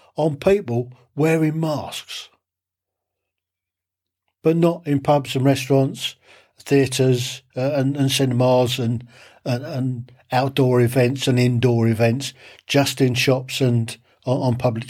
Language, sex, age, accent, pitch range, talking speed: English, male, 60-79, British, 110-140 Hz, 120 wpm